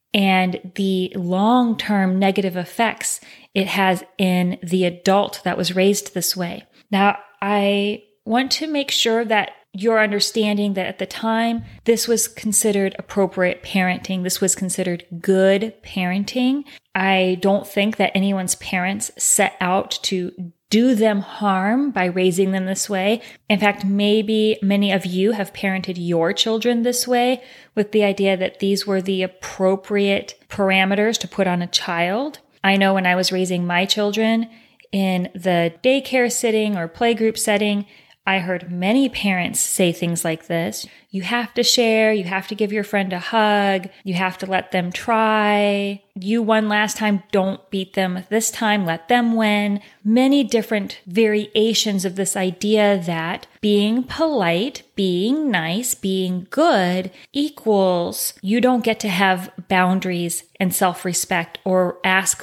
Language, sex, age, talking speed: English, female, 30-49, 150 wpm